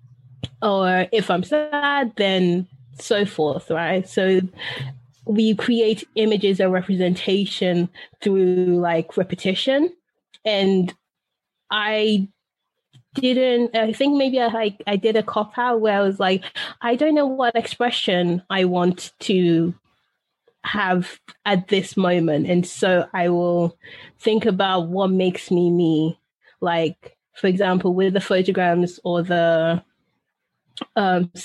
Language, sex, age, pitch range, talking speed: English, female, 20-39, 175-215 Hz, 120 wpm